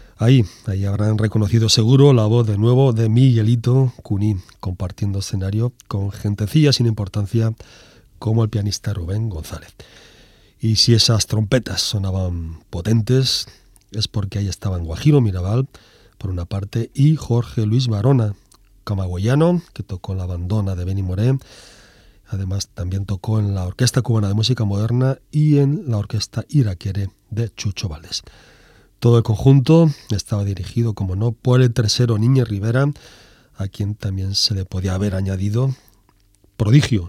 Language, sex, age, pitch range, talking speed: Spanish, male, 40-59, 100-125 Hz, 145 wpm